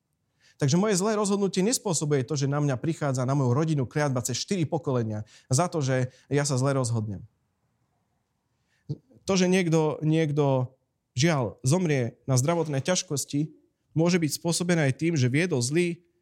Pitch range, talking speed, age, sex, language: 130-165 Hz, 150 wpm, 30-49, male, Slovak